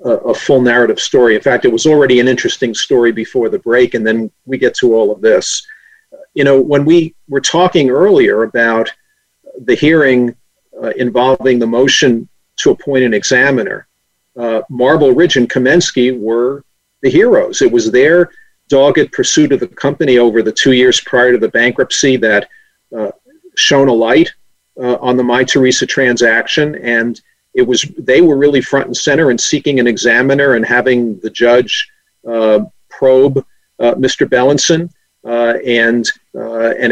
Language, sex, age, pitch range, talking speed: English, male, 50-69, 125-190 Hz, 165 wpm